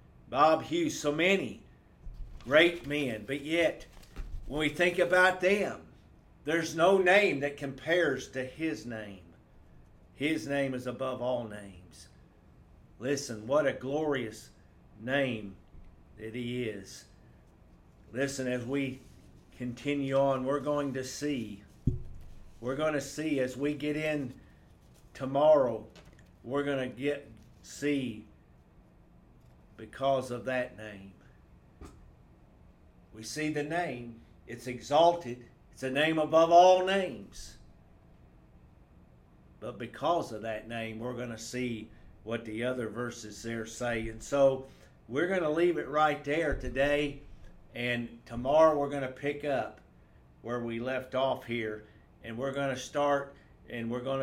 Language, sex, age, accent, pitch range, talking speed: English, male, 50-69, American, 110-145 Hz, 130 wpm